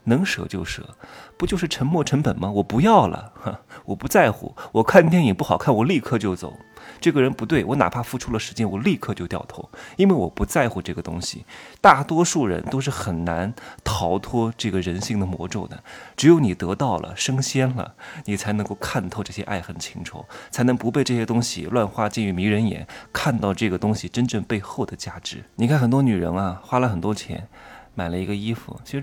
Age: 20-39